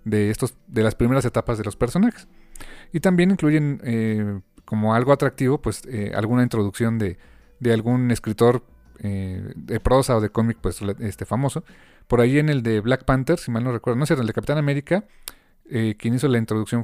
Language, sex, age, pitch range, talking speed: Spanish, male, 40-59, 110-150 Hz, 195 wpm